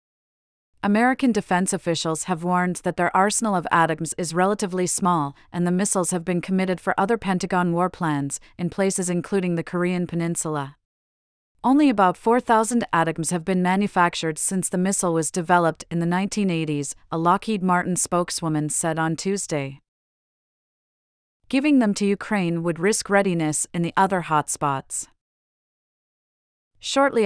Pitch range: 165-195 Hz